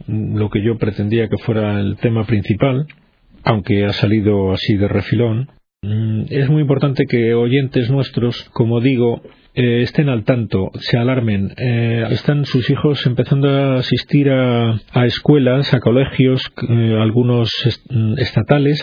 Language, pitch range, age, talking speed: Spanish, 110-130 Hz, 40-59, 130 wpm